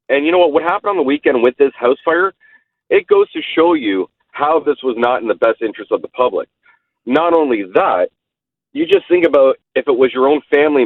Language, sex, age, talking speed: English, male, 40-59, 230 wpm